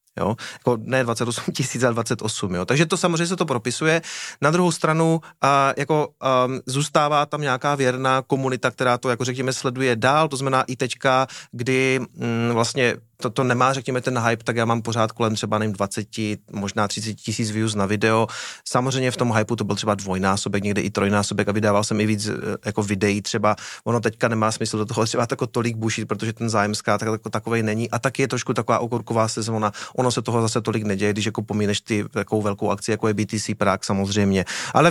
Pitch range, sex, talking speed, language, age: 110-135 Hz, male, 205 wpm, Czech, 30-49